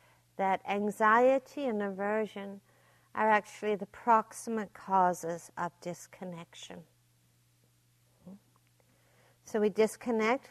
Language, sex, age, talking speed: English, female, 60-79, 80 wpm